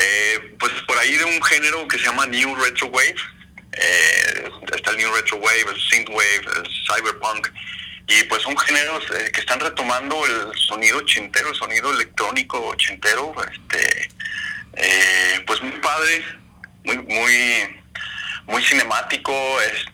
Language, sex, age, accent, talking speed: Spanish, male, 30-49, Mexican, 145 wpm